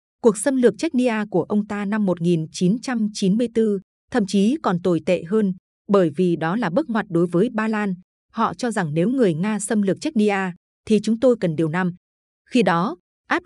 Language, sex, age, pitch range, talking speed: Vietnamese, female, 20-39, 180-225 Hz, 190 wpm